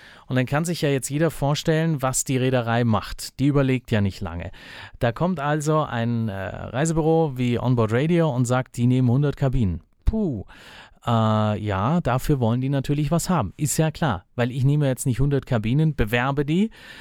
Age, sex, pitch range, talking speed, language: 30-49, male, 115-145 Hz, 185 wpm, German